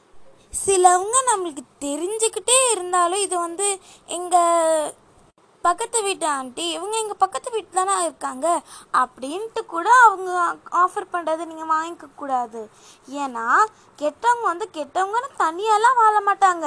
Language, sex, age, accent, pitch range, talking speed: Tamil, female, 20-39, native, 305-425 Hz, 110 wpm